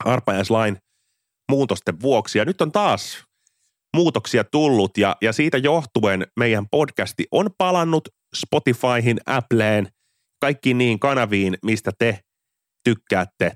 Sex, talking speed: male, 105 wpm